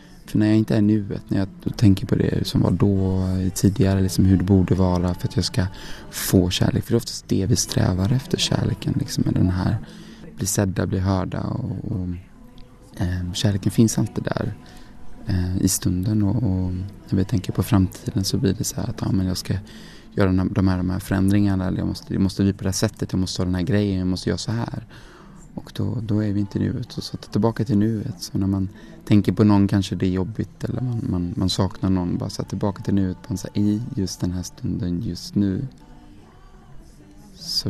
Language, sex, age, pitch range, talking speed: Swedish, male, 20-39, 95-115 Hz, 215 wpm